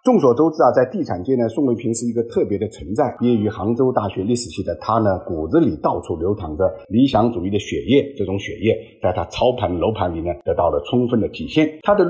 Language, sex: Chinese, male